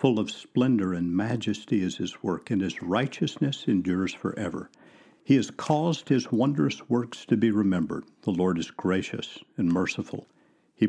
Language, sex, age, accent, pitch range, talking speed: English, male, 60-79, American, 95-135 Hz, 160 wpm